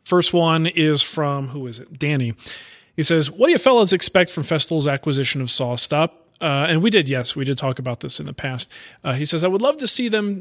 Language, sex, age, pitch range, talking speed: English, male, 30-49, 135-165 Hz, 240 wpm